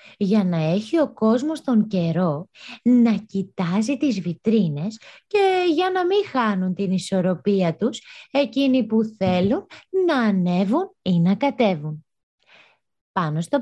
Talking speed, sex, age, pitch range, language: 130 wpm, female, 20-39, 185-260 Hz, Greek